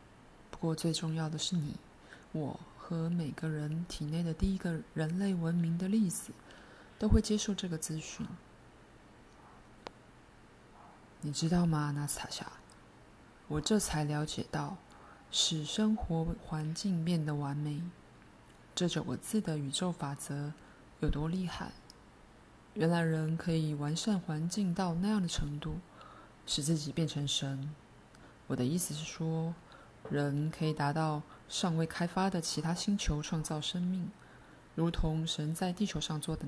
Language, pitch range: Chinese, 155-180 Hz